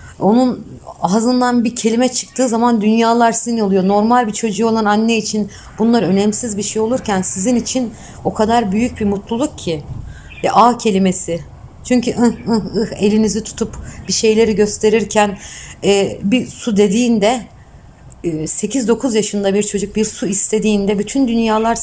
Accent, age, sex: native, 60-79, female